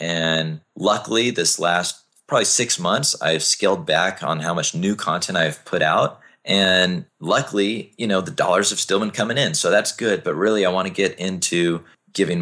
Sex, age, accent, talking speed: male, 30-49, American, 195 wpm